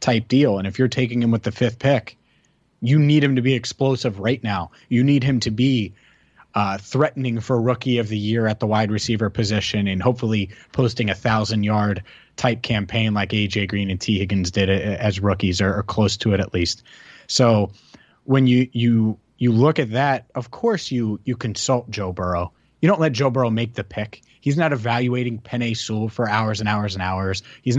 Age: 30-49